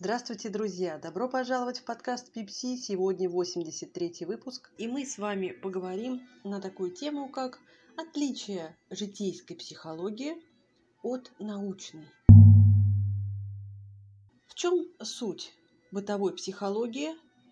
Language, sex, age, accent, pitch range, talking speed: Russian, female, 30-49, native, 185-250 Hz, 100 wpm